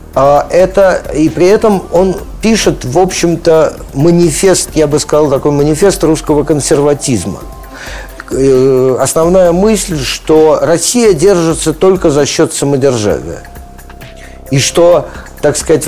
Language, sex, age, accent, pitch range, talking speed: Russian, male, 50-69, native, 120-170 Hz, 115 wpm